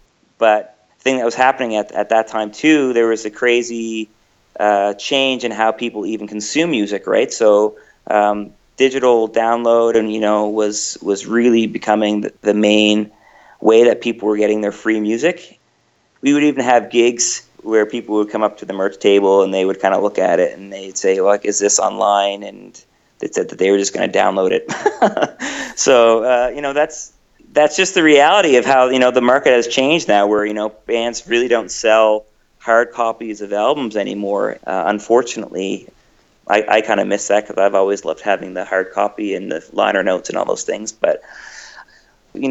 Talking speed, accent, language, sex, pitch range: 200 wpm, American, English, male, 105-120 Hz